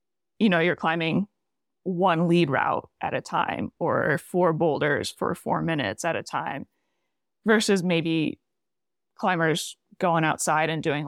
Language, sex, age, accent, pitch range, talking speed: English, female, 20-39, American, 160-185 Hz, 140 wpm